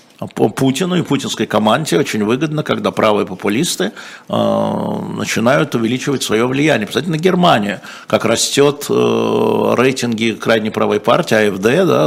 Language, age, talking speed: Russian, 50-69, 125 wpm